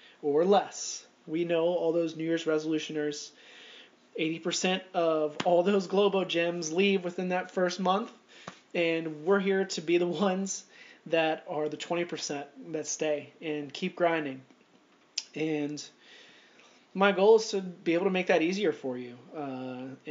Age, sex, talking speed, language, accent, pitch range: 20-39, male, 150 wpm, English, American, 150-185 Hz